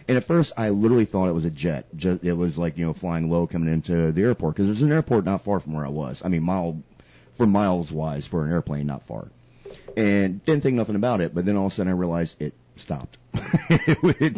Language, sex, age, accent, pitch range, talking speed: English, male, 30-49, American, 85-110 Hz, 240 wpm